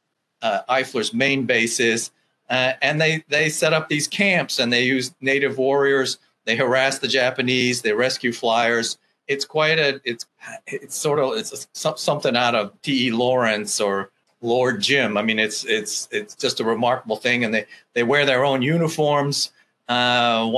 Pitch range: 115-140 Hz